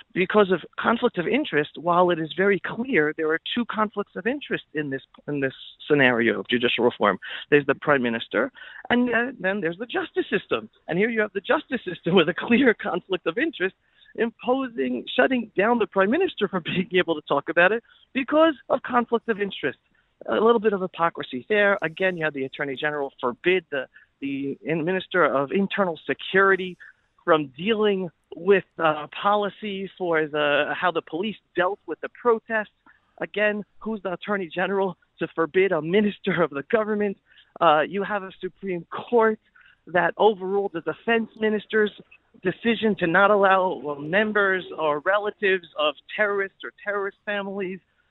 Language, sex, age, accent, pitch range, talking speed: English, male, 40-59, American, 160-210 Hz, 165 wpm